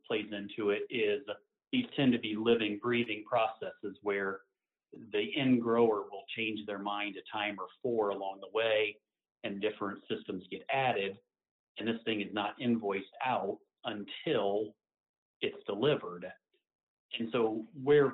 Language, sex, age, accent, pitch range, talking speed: English, male, 40-59, American, 105-130 Hz, 145 wpm